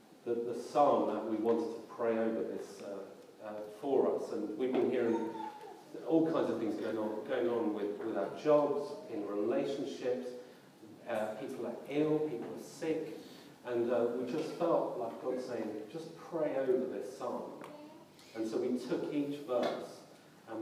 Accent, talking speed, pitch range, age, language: British, 170 wpm, 120-165 Hz, 40-59, English